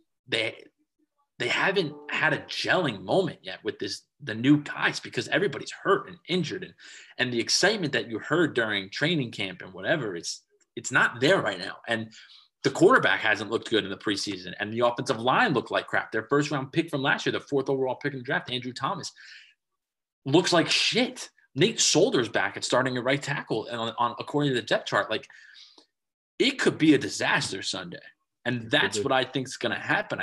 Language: English